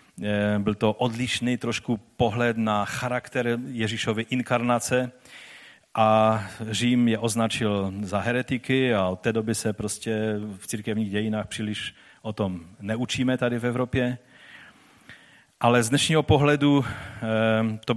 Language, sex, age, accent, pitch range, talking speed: Czech, male, 40-59, native, 110-135 Hz, 120 wpm